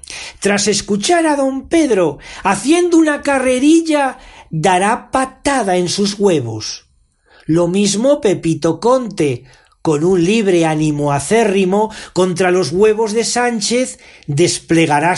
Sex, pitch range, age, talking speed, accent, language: male, 145-215 Hz, 40-59, 110 wpm, Spanish, Spanish